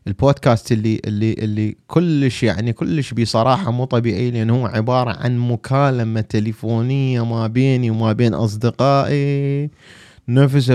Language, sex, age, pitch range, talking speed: English, male, 30-49, 90-125 Hz, 125 wpm